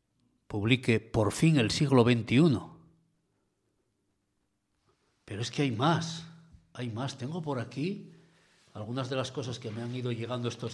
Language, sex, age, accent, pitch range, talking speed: Spanish, male, 60-79, Spanish, 115-155 Hz, 145 wpm